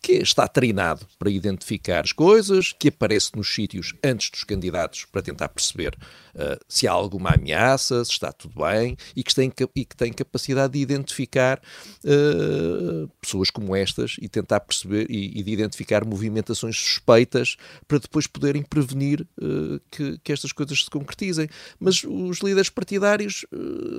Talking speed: 145 wpm